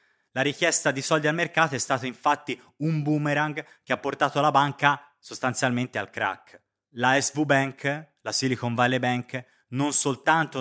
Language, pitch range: Italian, 110-130 Hz